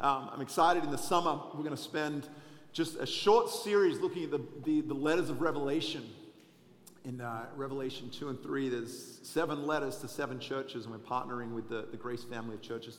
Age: 40-59